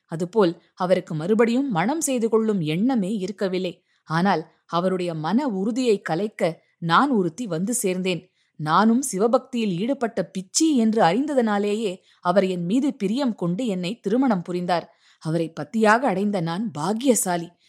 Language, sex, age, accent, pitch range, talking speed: Tamil, female, 20-39, native, 180-235 Hz, 120 wpm